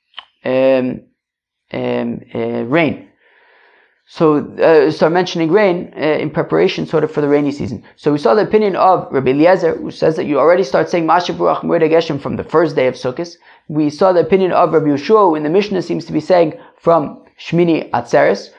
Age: 20-39